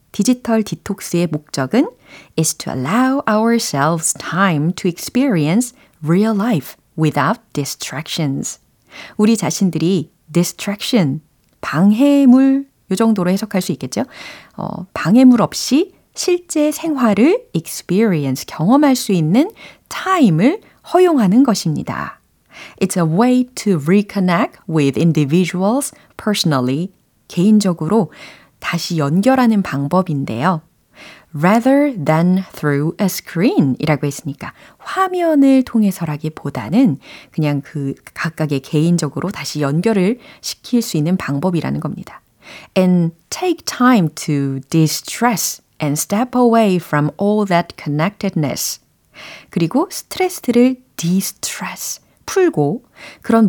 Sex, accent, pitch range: female, native, 160-240 Hz